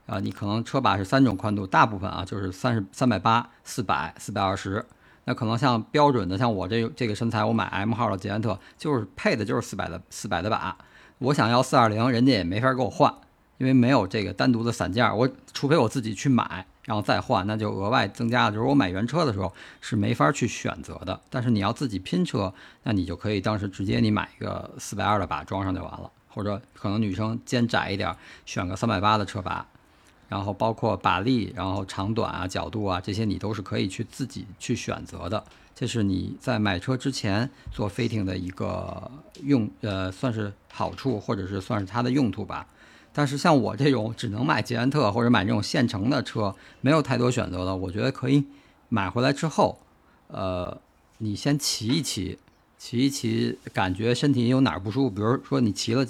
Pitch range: 100-125 Hz